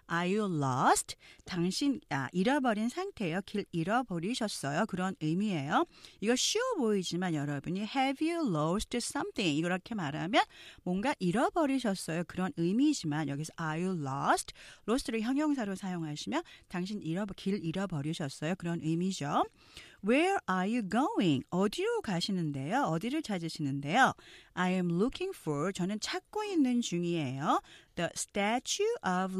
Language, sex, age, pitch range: Korean, female, 40-59, 170-265 Hz